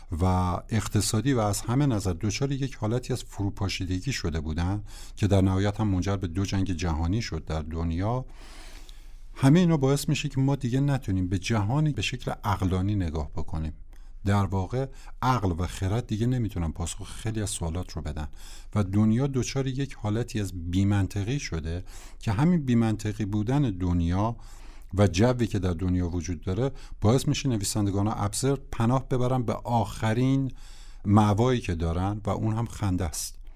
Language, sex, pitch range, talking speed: Persian, male, 90-115 Hz, 155 wpm